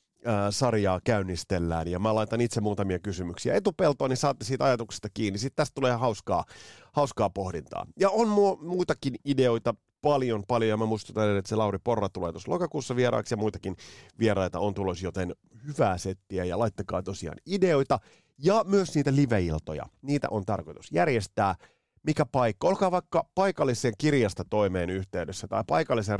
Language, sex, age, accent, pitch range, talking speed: Finnish, male, 30-49, native, 95-130 Hz, 155 wpm